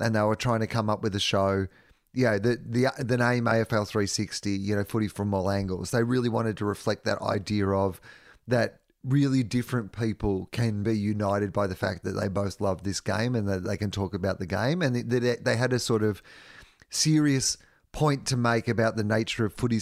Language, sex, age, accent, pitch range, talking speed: English, male, 30-49, Australian, 100-120 Hz, 220 wpm